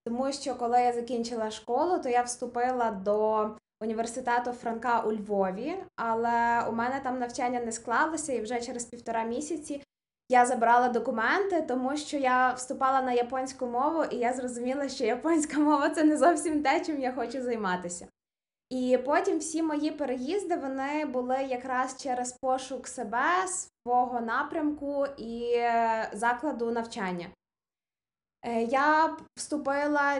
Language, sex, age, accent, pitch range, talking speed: Ukrainian, female, 20-39, native, 230-275 Hz, 135 wpm